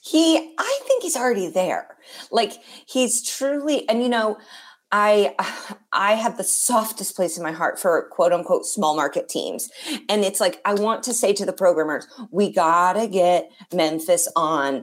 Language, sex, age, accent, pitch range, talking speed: English, female, 30-49, American, 195-265 Hz, 175 wpm